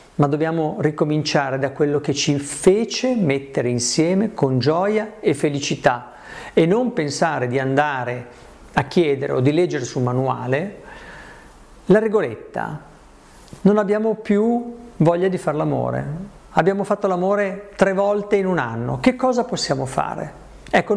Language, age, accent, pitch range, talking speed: Italian, 50-69, native, 145-205 Hz, 140 wpm